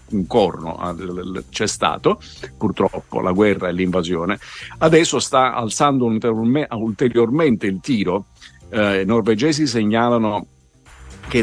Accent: native